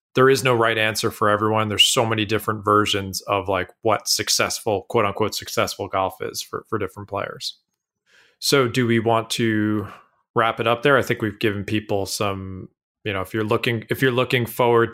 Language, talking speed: English, 195 wpm